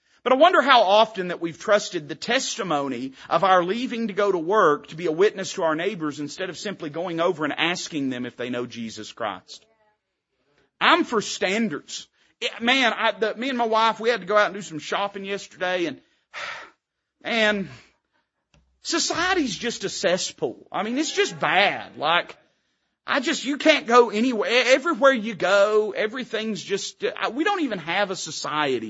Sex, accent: male, American